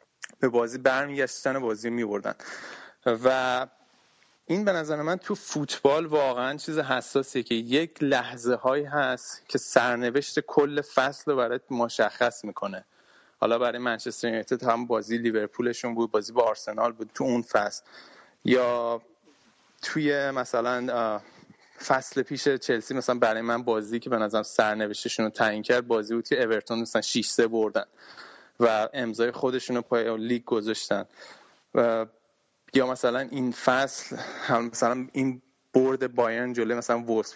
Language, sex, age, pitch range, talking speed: Persian, male, 30-49, 115-135 Hz, 140 wpm